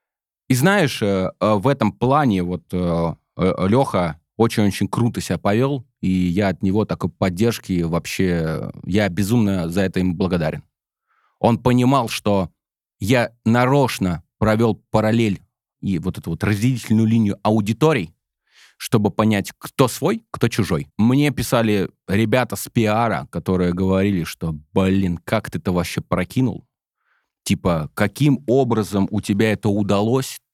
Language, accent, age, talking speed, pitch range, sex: Russian, native, 20-39, 130 wpm, 95-115 Hz, male